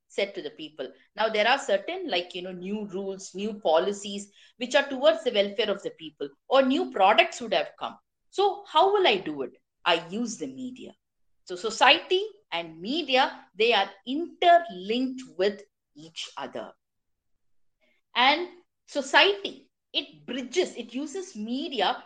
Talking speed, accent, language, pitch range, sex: 150 wpm, native, Tamil, 210-330 Hz, female